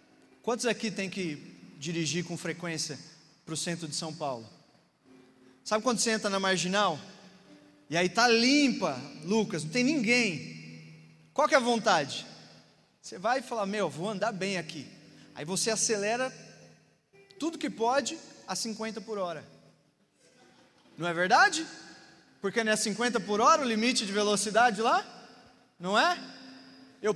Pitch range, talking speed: 160-240 Hz, 150 wpm